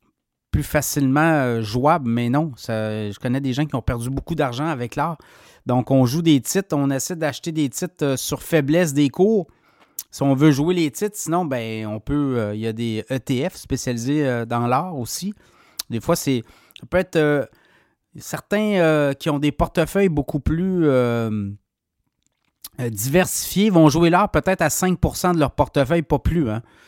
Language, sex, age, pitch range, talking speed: French, male, 30-49, 125-160 Hz, 175 wpm